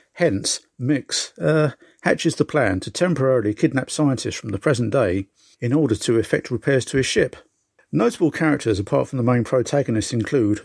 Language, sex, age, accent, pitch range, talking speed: English, male, 50-69, British, 115-145 Hz, 170 wpm